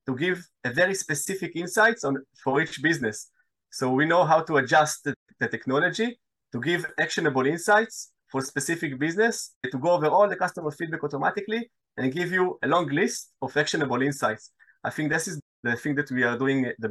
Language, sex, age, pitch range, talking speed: English, male, 20-39, 135-170 Hz, 195 wpm